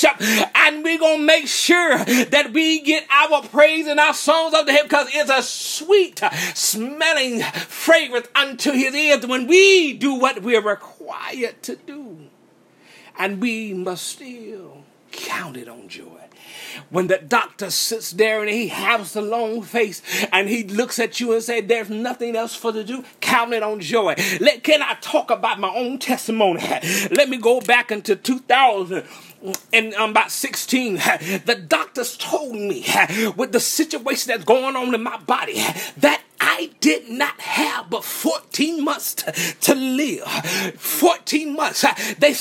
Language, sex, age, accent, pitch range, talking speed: English, male, 30-49, American, 230-305 Hz, 165 wpm